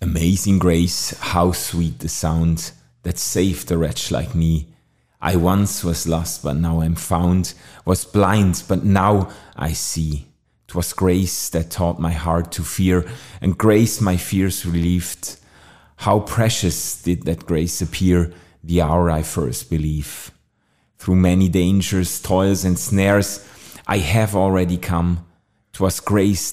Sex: male